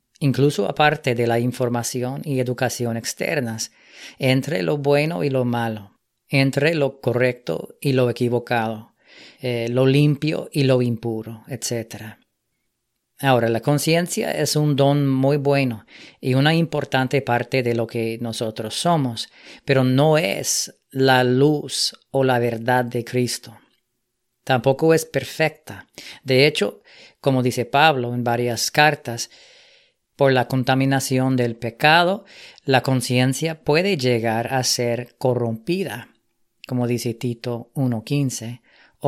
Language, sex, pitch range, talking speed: English, female, 120-140 Hz, 125 wpm